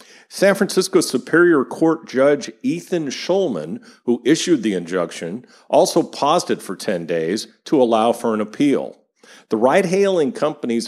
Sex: male